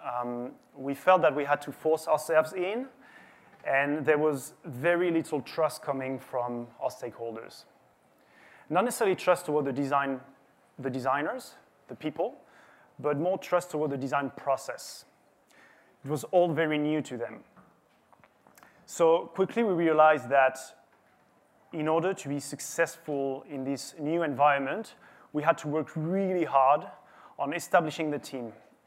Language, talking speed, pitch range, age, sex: English, 140 wpm, 140-170 Hz, 30-49, male